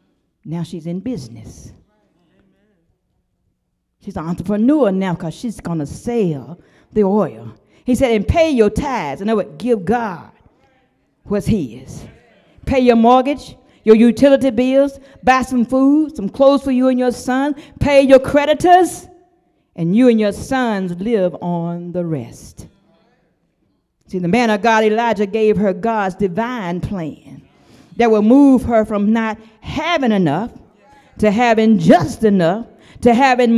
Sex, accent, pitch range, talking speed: female, American, 205-275 Hz, 145 wpm